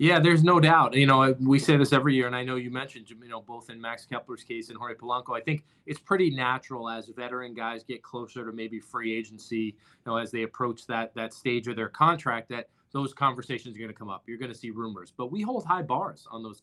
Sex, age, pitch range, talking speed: male, 20-39, 115-135 Hz, 255 wpm